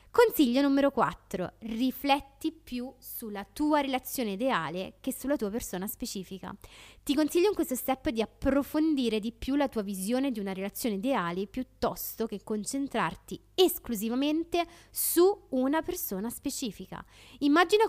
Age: 20-39